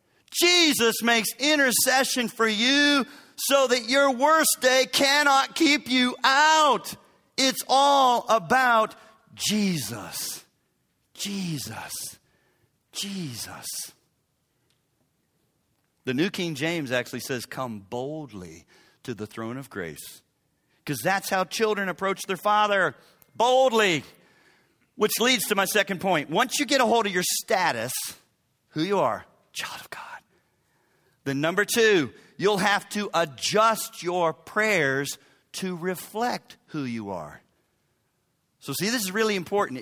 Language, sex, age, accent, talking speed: English, male, 40-59, American, 120 wpm